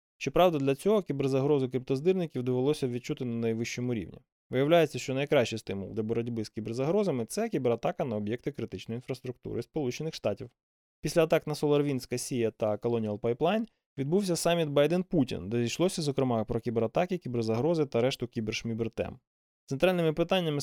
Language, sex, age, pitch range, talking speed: Ukrainian, male, 20-39, 115-160 Hz, 145 wpm